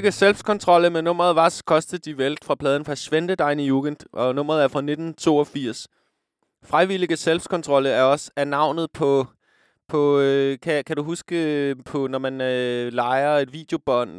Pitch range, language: 120-155 Hz, Danish